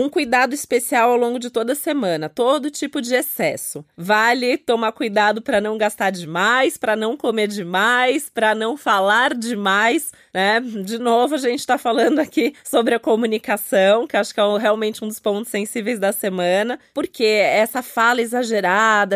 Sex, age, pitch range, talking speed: female, 20-39, 210-255 Hz, 170 wpm